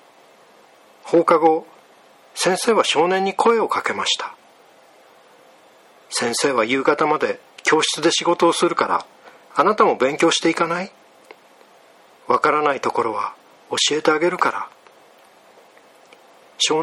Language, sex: Japanese, male